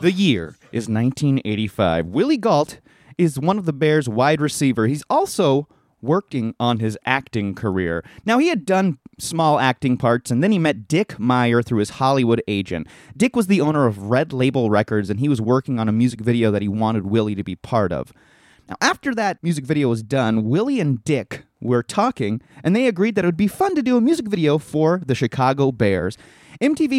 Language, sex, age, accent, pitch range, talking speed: English, male, 30-49, American, 110-155 Hz, 200 wpm